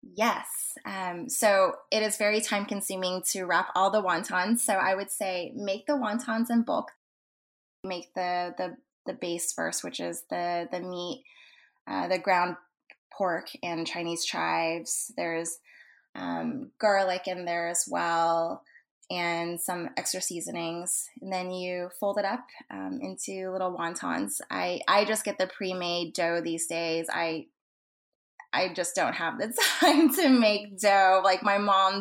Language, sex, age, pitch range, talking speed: English, female, 20-39, 175-205 Hz, 155 wpm